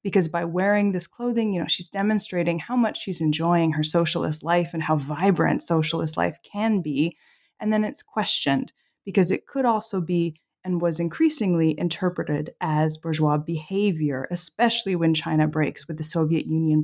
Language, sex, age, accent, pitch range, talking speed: English, female, 20-39, American, 160-200 Hz, 170 wpm